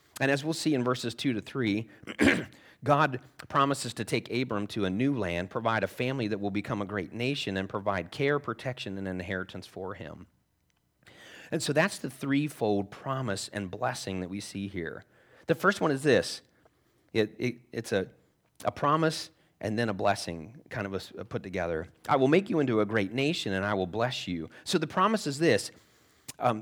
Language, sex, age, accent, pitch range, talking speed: English, male, 30-49, American, 100-135 Hz, 195 wpm